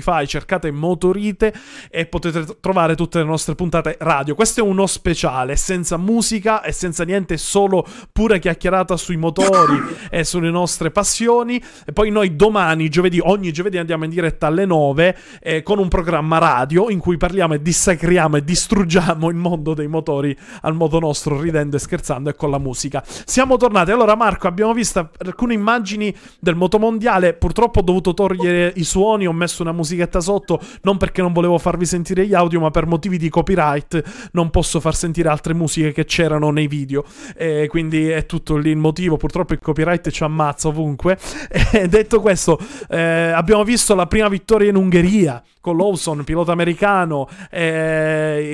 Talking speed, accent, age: 175 wpm, native, 30-49